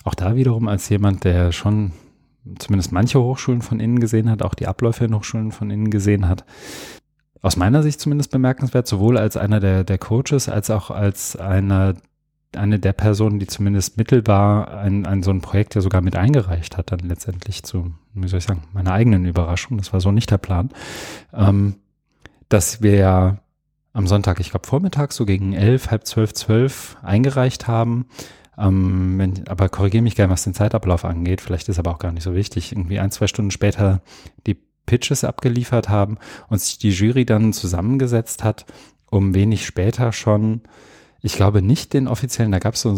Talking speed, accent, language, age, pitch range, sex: 180 wpm, German, English, 30-49, 95-115 Hz, male